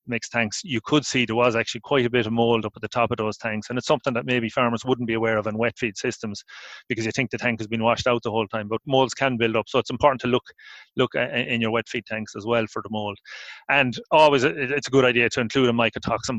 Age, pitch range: 30-49, 115-130 Hz